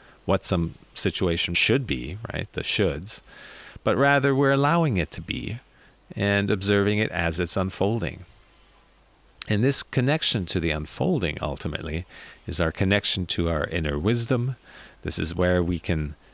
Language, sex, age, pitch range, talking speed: English, male, 40-59, 85-110 Hz, 145 wpm